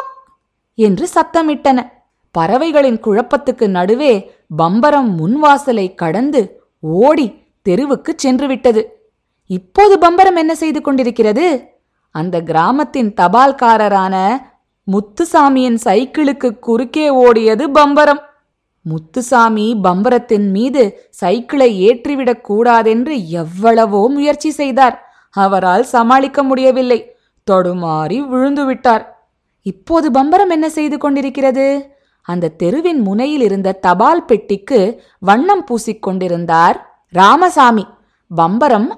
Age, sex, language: 20-39, female, Tamil